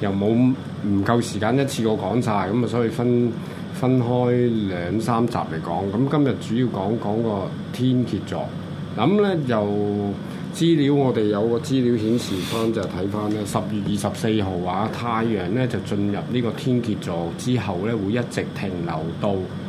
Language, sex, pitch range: Chinese, male, 100-130 Hz